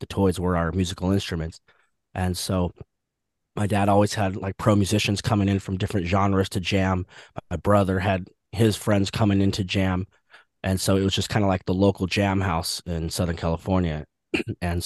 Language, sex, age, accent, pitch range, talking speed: English, male, 20-39, American, 100-115 Hz, 190 wpm